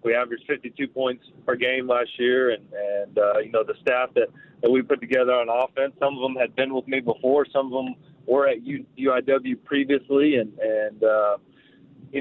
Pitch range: 115-135 Hz